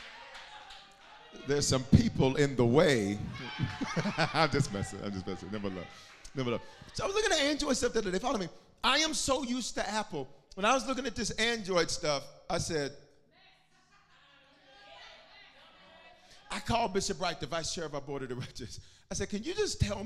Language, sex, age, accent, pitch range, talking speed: English, male, 40-59, American, 145-200 Hz, 185 wpm